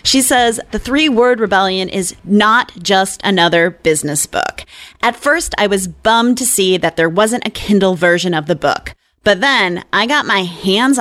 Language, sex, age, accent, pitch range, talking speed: English, female, 30-49, American, 170-230 Hz, 180 wpm